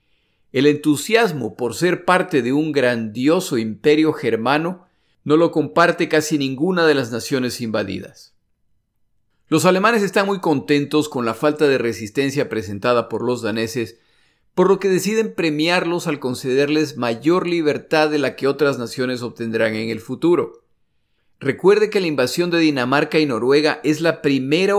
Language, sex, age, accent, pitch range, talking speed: Spanish, male, 50-69, Mexican, 120-160 Hz, 150 wpm